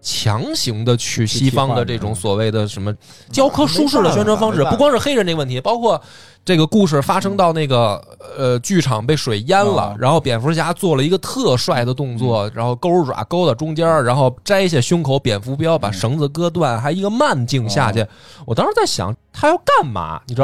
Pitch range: 120-185 Hz